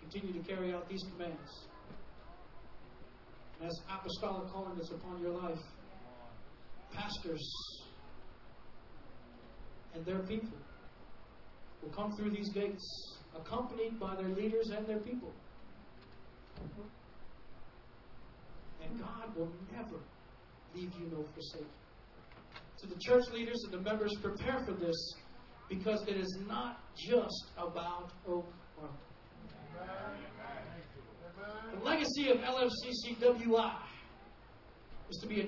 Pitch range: 190-255 Hz